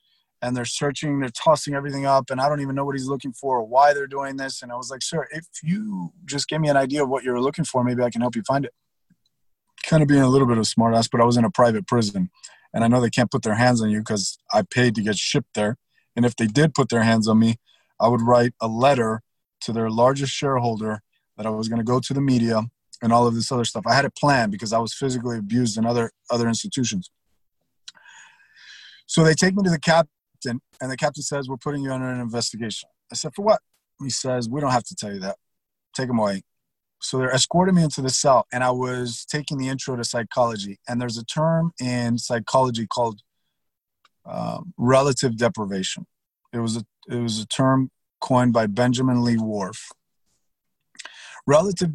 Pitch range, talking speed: 115-140 Hz, 225 wpm